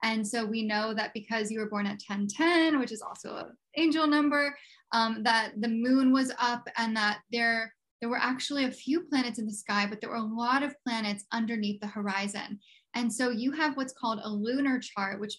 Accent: American